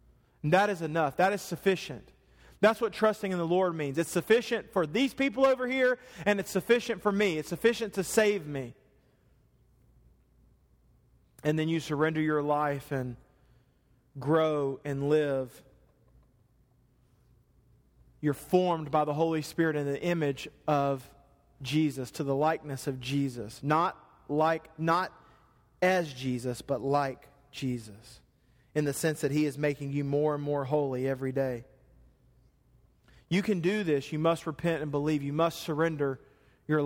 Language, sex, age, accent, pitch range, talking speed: English, male, 40-59, American, 135-165 Hz, 150 wpm